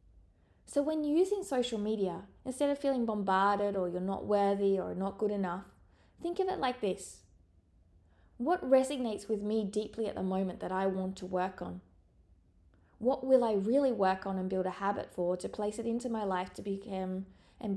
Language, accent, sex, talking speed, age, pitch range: English, Australian, female, 190 wpm, 20-39, 175-235 Hz